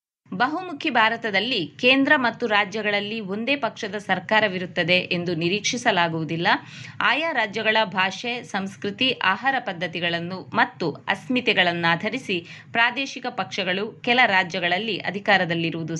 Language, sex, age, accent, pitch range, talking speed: Kannada, female, 20-39, native, 180-235 Hz, 85 wpm